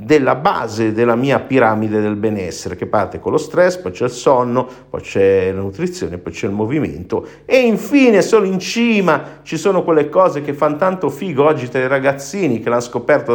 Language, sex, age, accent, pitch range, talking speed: Italian, male, 50-69, native, 115-175 Hz, 200 wpm